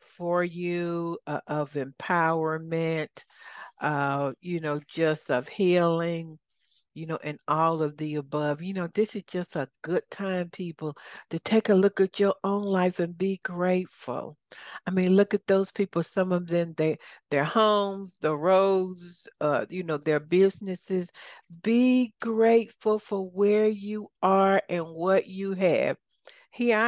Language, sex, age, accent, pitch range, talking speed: English, female, 60-79, American, 165-195 Hz, 150 wpm